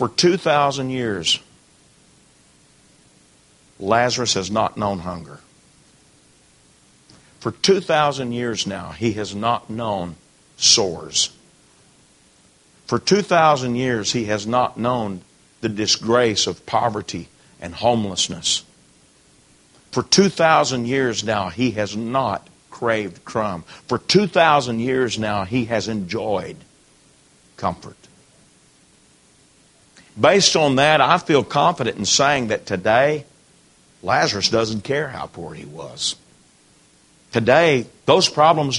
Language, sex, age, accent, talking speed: English, male, 50-69, American, 105 wpm